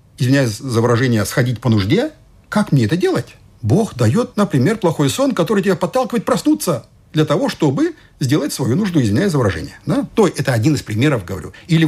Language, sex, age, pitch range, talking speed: Ukrainian, male, 50-69, 110-175 Hz, 180 wpm